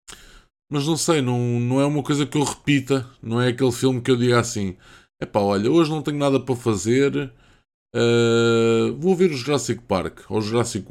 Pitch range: 105-125 Hz